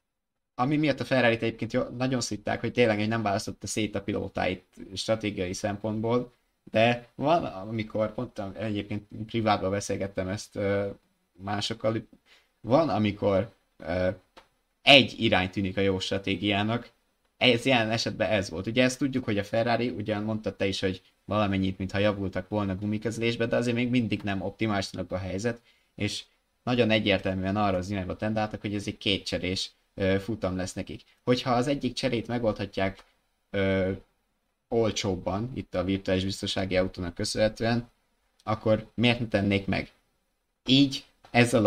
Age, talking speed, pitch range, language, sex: 20-39, 135 wpm, 100-115 Hz, Hungarian, male